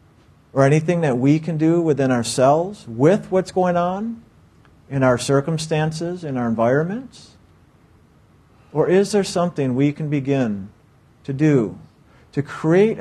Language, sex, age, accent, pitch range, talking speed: English, male, 50-69, American, 125-165 Hz, 135 wpm